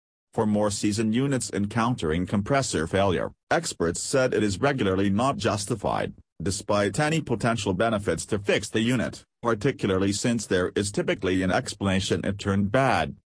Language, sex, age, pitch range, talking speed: English, male, 40-59, 95-115 Hz, 145 wpm